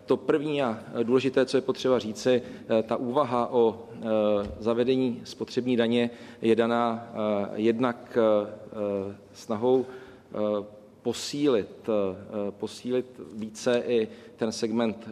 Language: Czech